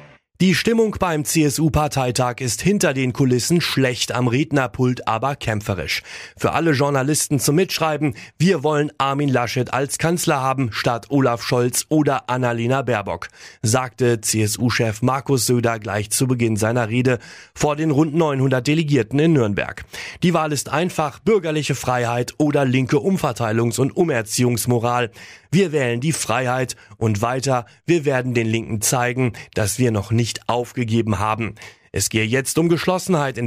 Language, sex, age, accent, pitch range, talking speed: German, male, 30-49, German, 115-145 Hz, 145 wpm